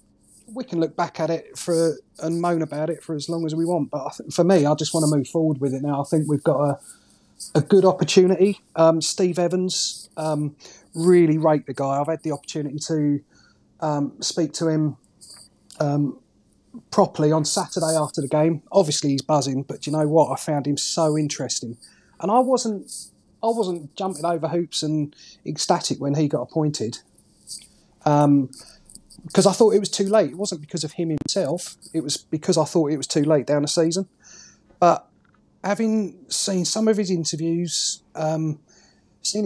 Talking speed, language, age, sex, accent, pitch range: 190 wpm, English, 30-49, male, British, 150-180 Hz